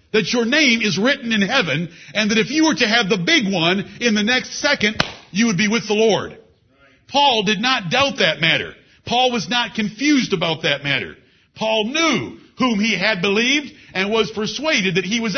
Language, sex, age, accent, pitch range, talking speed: English, male, 60-79, American, 195-255 Hz, 205 wpm